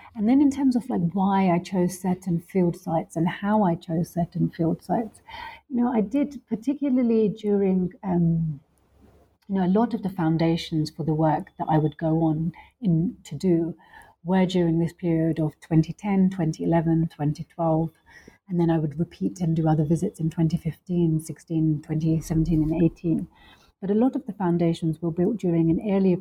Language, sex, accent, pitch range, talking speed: English, female, British, 165-195 Hz, 190 wpm